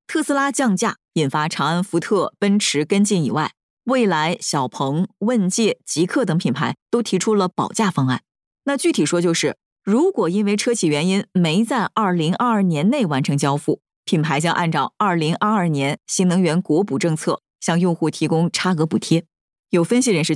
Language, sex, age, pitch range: Chinese, female, 20-39, 155-230 Hz